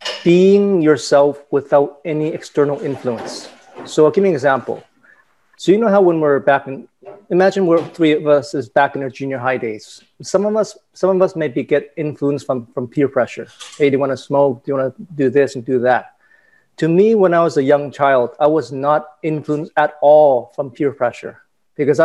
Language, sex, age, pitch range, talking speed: English, male, 40-59, 135-165 Hz, 210 wpm